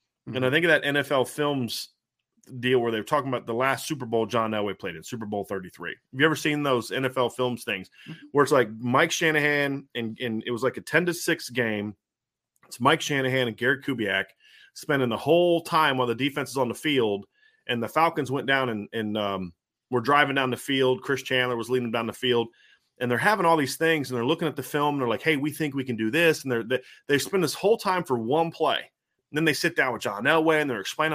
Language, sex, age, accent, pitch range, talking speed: English, male, 30-49, American, 125-165 Hz, 250 wpm